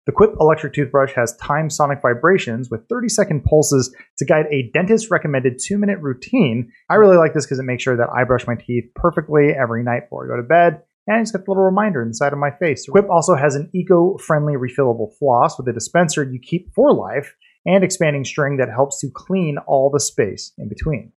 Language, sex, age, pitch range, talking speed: English, male, 30-49, 130-180 Hz, 210 wpm